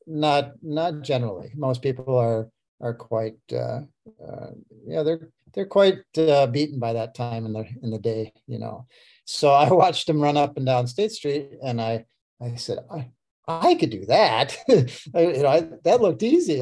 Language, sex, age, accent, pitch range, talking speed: English, male, 40-59, American, 120-145 Hz, 185 wpm